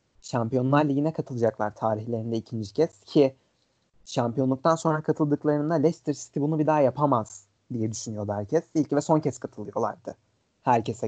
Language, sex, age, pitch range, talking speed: Turkish, male, 30-49, 115-145 Hz, 135 wpm